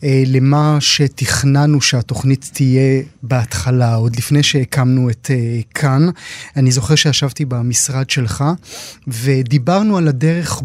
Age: 30-49